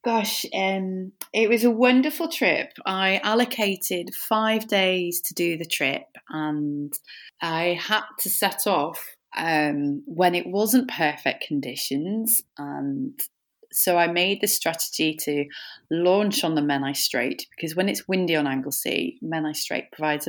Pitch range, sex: 155-210 Hz, female